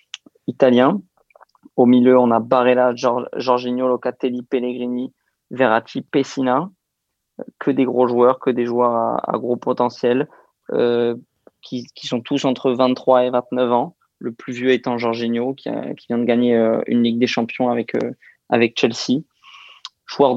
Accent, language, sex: French, French, male